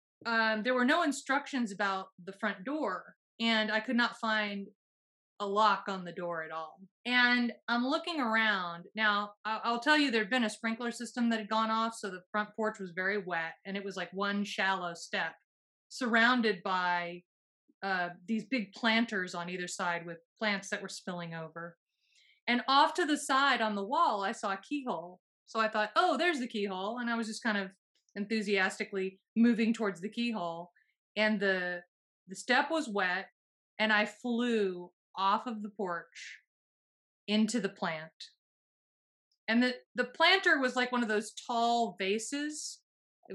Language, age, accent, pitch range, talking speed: English, 30-49, American, 195-235 Hz, 175 wpm